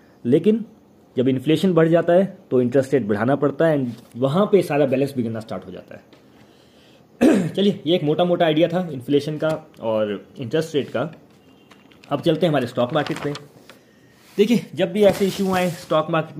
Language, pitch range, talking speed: Hindi, 135-170 Hz, 185 wpm